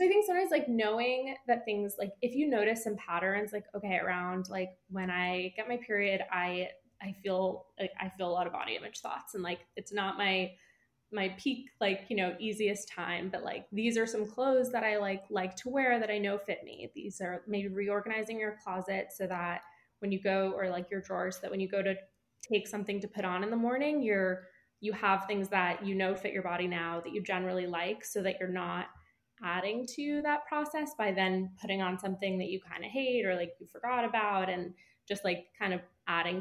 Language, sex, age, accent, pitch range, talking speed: English, female, 20-39, American, 185-240 Hz, 225 wpm